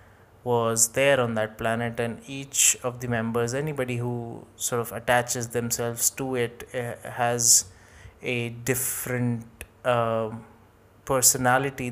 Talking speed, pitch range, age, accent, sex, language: 120 wpm, 110-125 Hz, 20-39, Indian, male, English